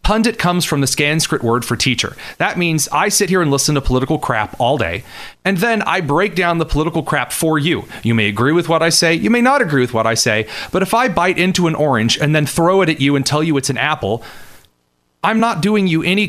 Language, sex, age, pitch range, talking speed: English, male, 30-49, 120-160 Hz, 255 wpm